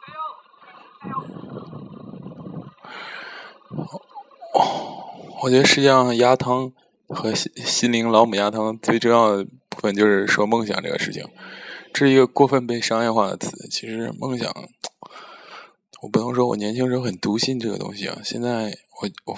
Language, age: Chinese, 20-39